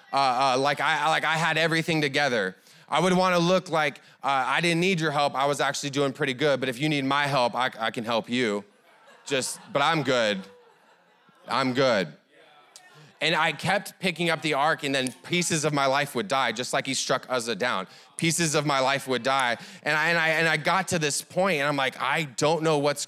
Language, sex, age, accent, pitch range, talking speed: English, male, 20-39, American, 120-160 Hz, 225 wpm